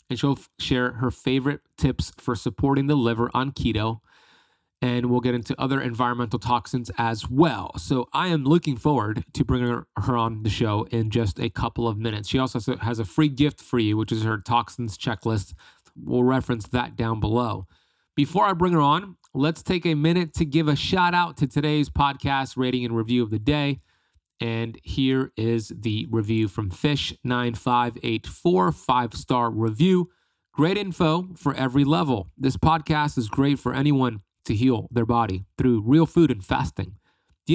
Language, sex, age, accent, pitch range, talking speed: English, male, 30-49, American, 115-145 Hz, 175 wpm